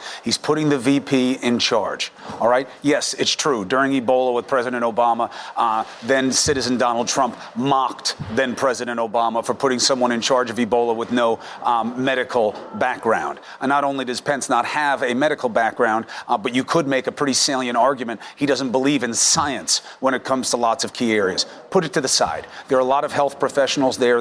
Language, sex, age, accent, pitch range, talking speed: English, male, 40-59, American, 125-165 Hz, 205 wpm